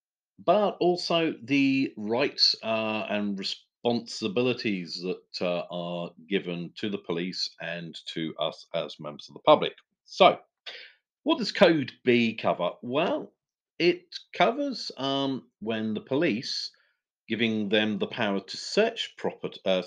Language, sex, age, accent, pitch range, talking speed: English, male, 50-69, British, 90-125 Hz, 125 wpm